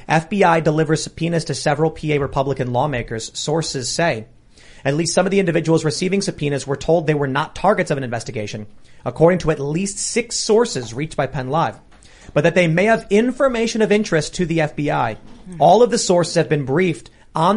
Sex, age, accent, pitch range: male, 30-49, American, 140-185 Hz